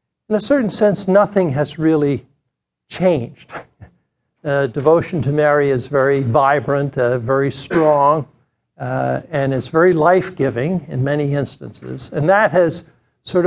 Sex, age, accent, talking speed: male, 60-79, American, 135 wpm